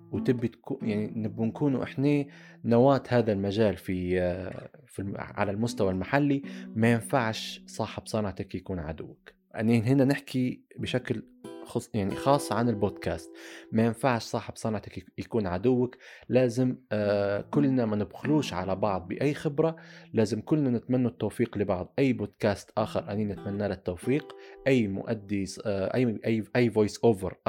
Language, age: Arabic, 20-39